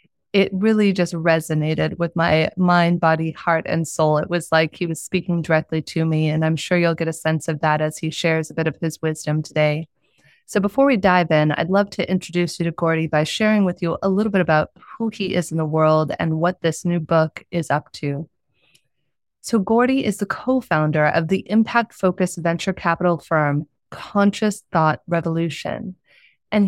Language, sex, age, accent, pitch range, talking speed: English, female, 20-39, American, 160-205 Hz, 195 wpm